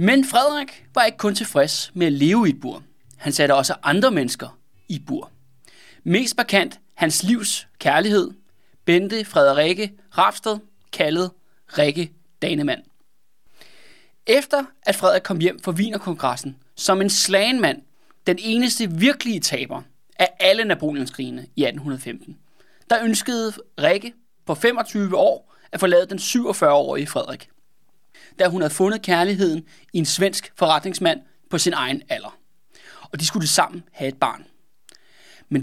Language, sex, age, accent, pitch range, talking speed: Danish, male, 20-39, native, 160-220 Hz, 140 wpm